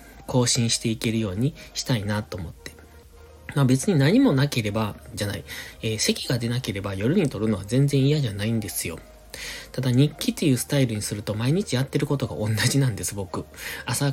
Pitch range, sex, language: 105-140 Hz, male, Japanese